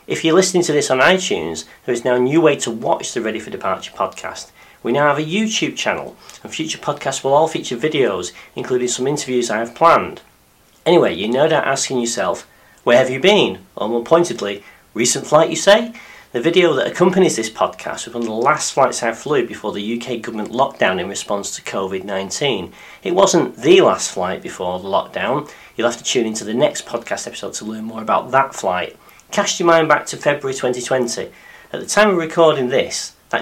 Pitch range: 110-160 Hz